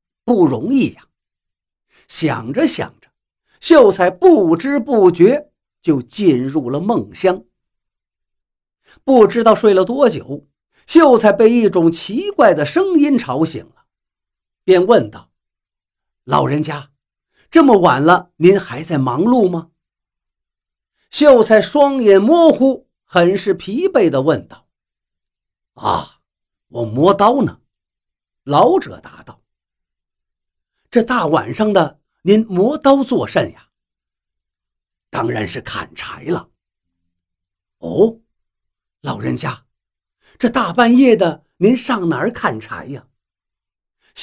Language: Chinese